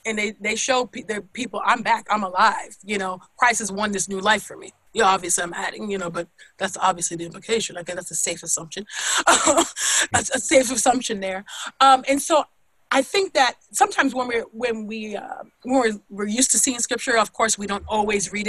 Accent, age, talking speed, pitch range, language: American, 30-49, 220 wpm, 195-260 Hz, English